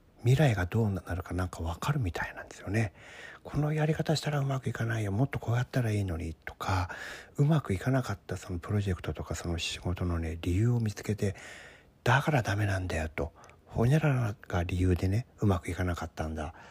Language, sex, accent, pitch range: Japanese, male, native, 90-125 Hz